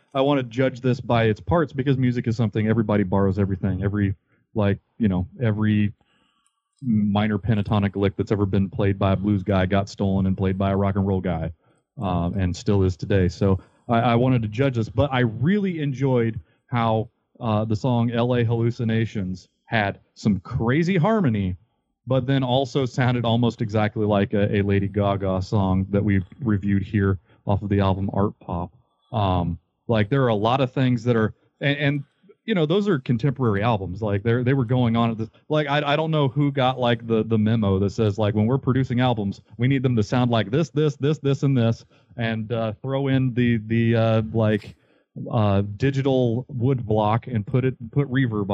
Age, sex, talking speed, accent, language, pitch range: 30-49, male, 200 wpm, American, English, 100-135 Hz